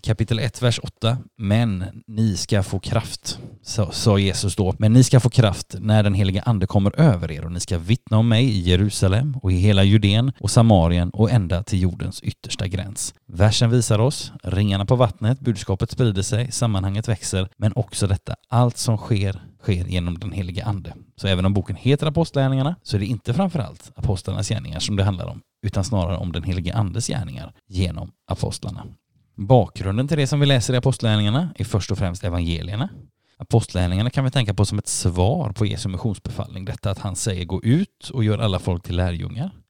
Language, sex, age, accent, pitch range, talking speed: Swedish, male, 30-49, native, 95-120 Hz, 195 wpm